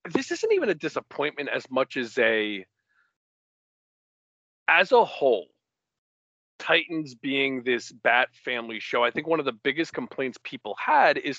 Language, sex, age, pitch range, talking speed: English, male, 40-59, 110-155 Hz, 150 wpm